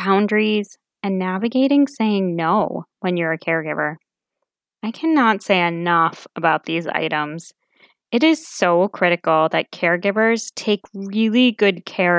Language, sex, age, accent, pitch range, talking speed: English, female, 20-39, American, 175-225 Hz, 130 wpm